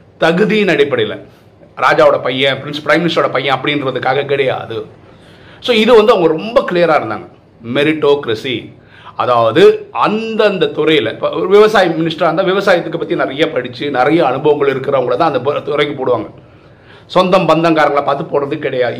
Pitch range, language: 140-215 Hz, Tamil